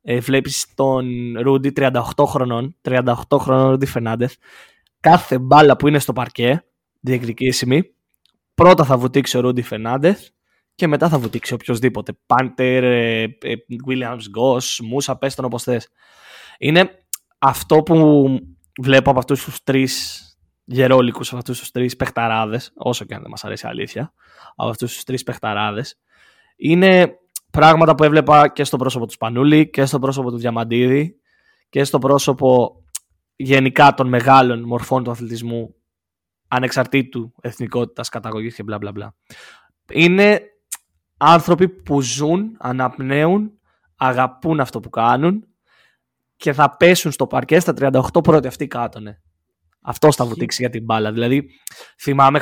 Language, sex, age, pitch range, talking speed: Greek, male, 20-39, 120-145 Hz, 135 wpm